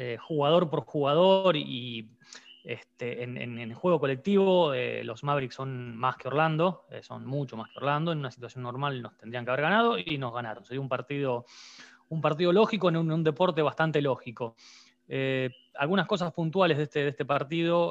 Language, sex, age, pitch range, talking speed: Spanish, male, 20-39, 125-165 Hz, 190 wpm